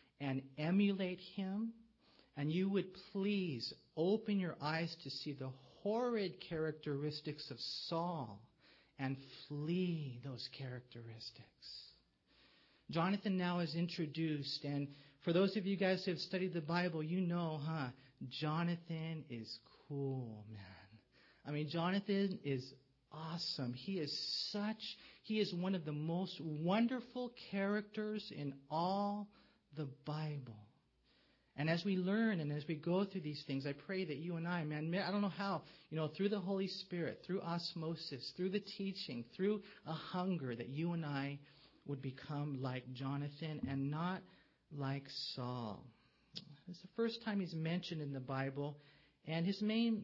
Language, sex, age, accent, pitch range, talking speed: English, male, 40-59, American, 135-185 Hz, 145 wpm